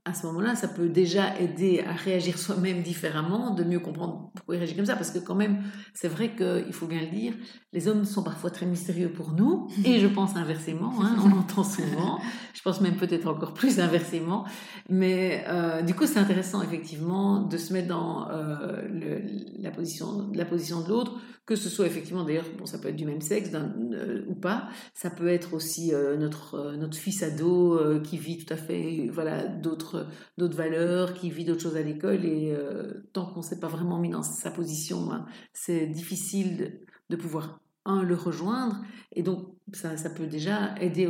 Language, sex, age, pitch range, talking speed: French, female, 50-69, 165-200 Hz, 205 wpm